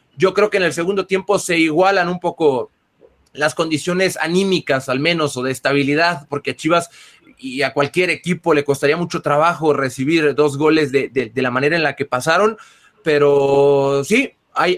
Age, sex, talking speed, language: 30-49, male, 185 wpm, Spanish